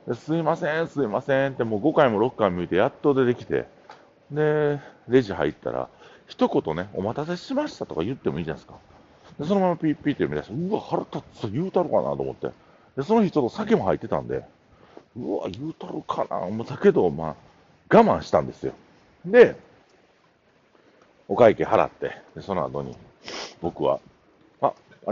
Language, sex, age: Japanese, male, 50-69